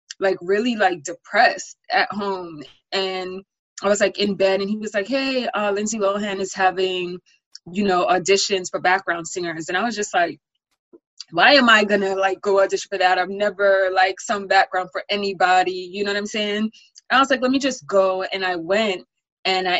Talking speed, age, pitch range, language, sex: 200 wpm, 20-39, 180-210 Hz, English, female